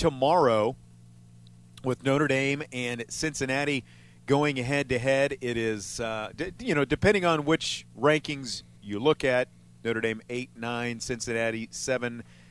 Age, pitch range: 40-59, 105-140 Hz